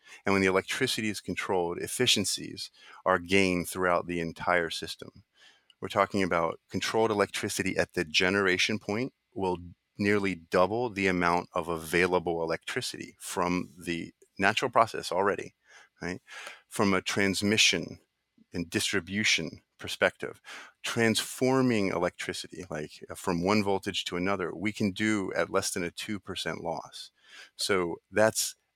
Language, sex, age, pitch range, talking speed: English, male, 30-49, 85-105 Hz, 125 wpm